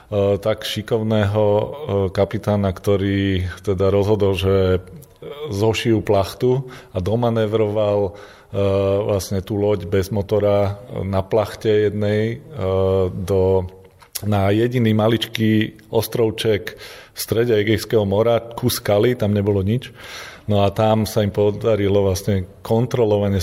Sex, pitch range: male, 95-110 Hz